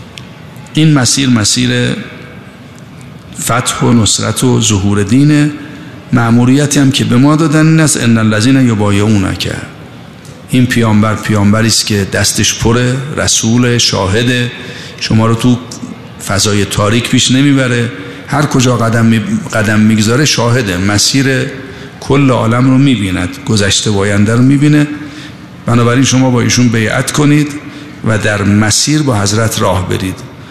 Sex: male